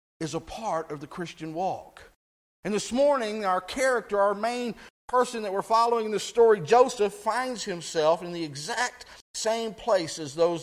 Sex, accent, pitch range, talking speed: male, American, 160-225 Hz, 175 wpm